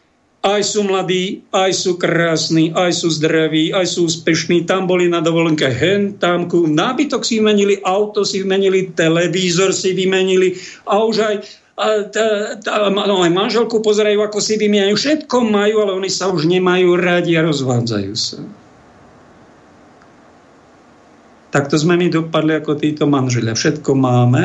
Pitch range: 150-190 Hz